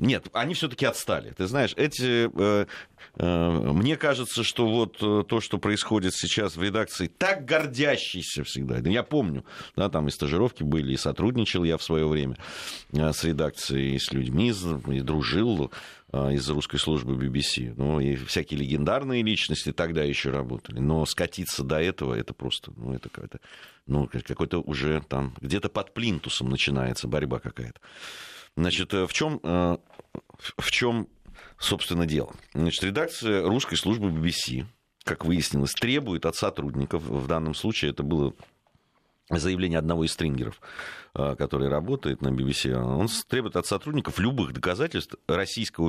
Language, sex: Russian, male